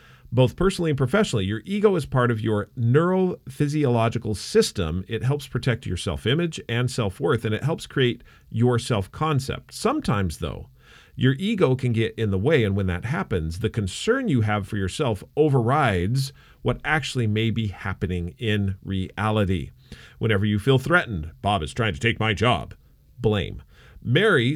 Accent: American